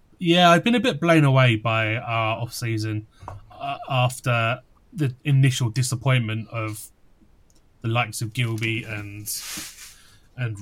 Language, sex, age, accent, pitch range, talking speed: English, male, 30-49, British, 110-135 Hz, 130 wpm